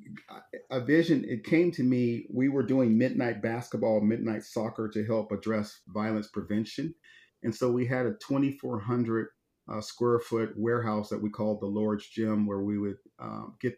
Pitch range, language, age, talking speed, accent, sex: 105-115 Hz, English, 40-59, 170 wpm, American, male